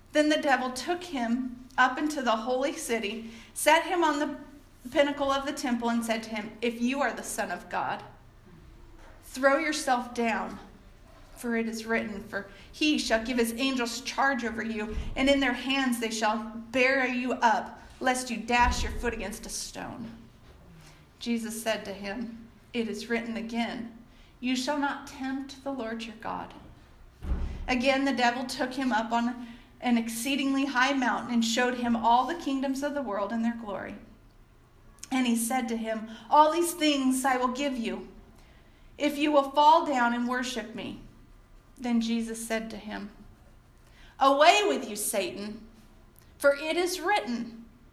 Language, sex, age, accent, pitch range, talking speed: English, female, 40-59, American, 225-270 Hz, 170 wpm